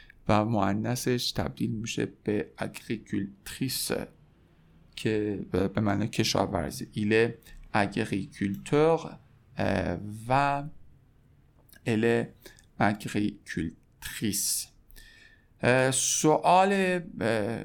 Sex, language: male, Persian